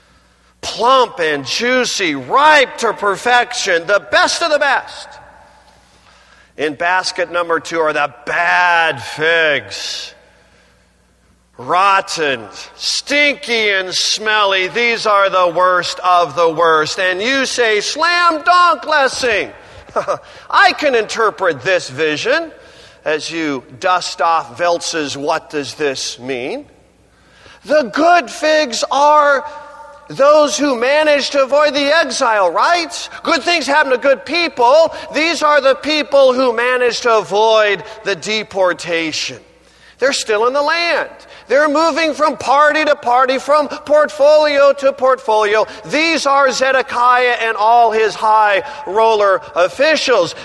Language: English